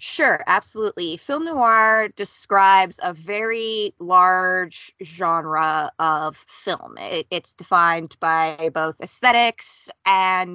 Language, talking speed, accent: English, 95 wpm, American